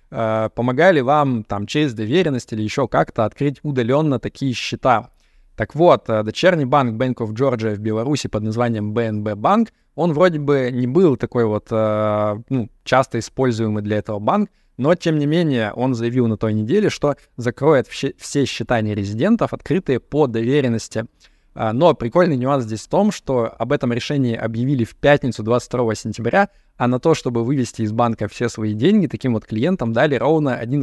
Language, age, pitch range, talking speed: Russian, 20-39, 110-140 Hz, 165 wpm